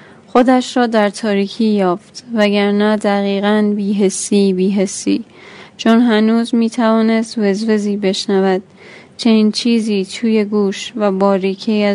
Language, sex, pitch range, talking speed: Persian, female, 200-225 Hz, 105 wpm